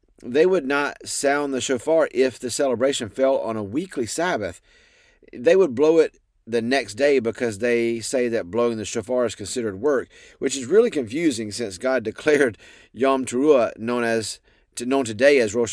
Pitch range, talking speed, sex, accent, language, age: 115-155 Hz, 175 wpm, male, American, English, 30-49